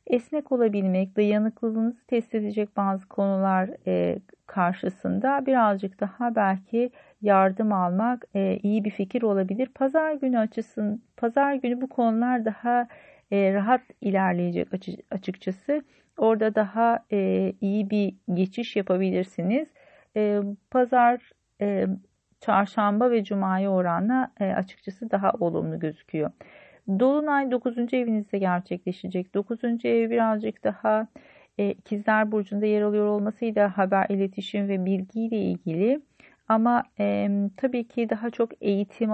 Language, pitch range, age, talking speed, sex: Turkish, 195-230 Hz, 40-59, 105 wpm, female